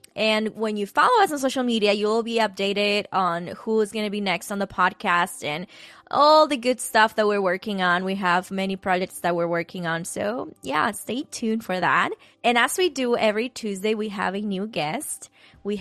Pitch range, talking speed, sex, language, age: 190-230 Hz, 215 wpm, female, English, 20-39